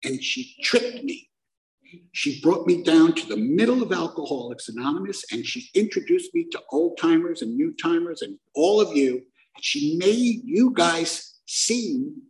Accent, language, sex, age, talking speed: American, English, male, 60-79, 160 wpm